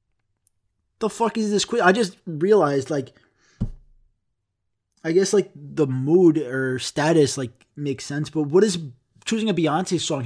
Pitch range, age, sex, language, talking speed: 125-165 Hz, 20-39, male, English, 150 wpm